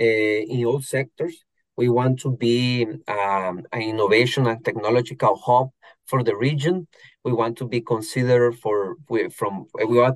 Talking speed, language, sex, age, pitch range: 160 wpm, English, male, 30-49, 120-140 Hz